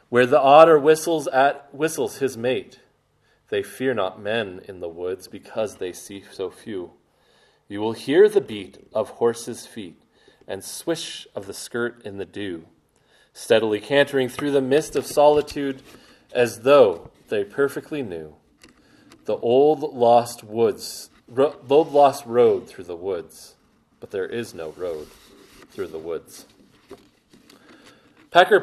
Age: 30-49